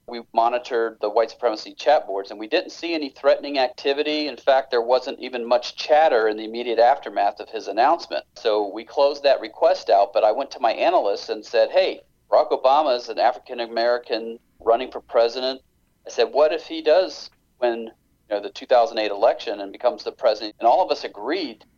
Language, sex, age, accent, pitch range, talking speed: English, male, 40-59, American, 105-130 Hz, 195 wpm